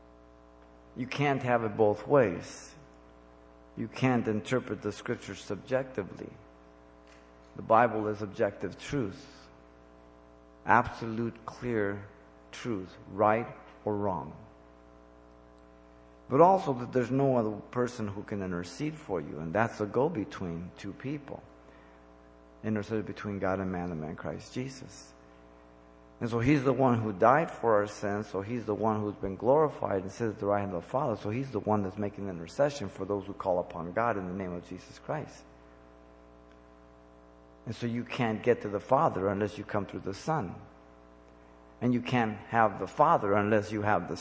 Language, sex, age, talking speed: English, male, 50-69, 165 wpm